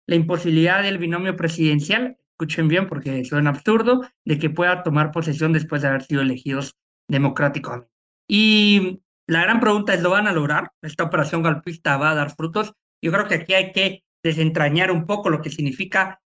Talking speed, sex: 185 wpm, male